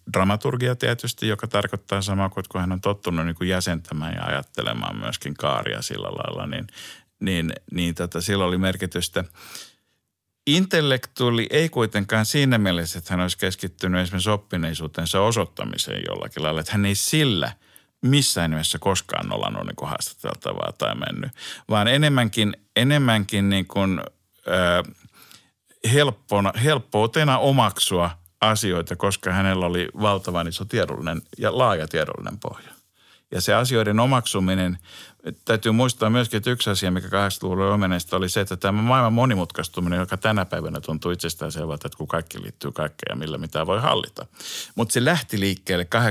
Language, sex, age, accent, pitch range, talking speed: Finnish, male, 50-69, native, 90-115 Hz, 135 wpm